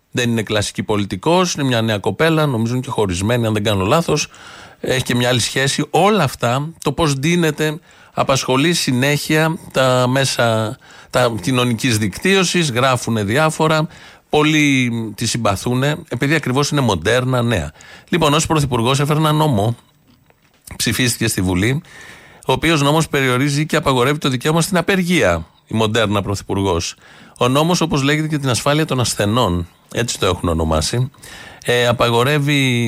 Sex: male